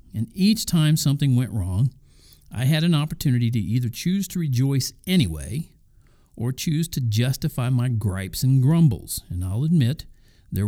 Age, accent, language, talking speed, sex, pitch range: 50-69, American, English, 155 wpm, male, 105-155 Hz